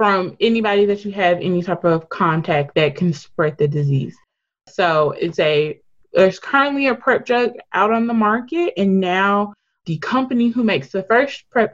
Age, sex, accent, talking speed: 20-39, female, American, 180 wpm